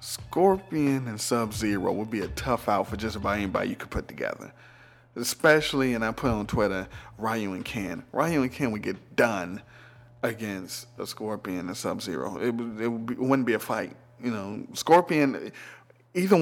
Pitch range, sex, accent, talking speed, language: 110-135 Hz, male, American, 170 wpm, English